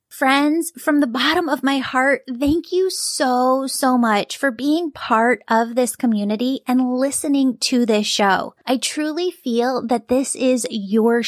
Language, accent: English, American